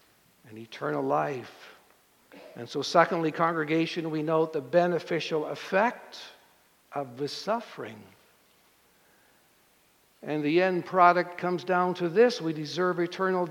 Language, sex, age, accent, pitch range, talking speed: English, male, 60-79, American, 170-245 Hz, 110 wpm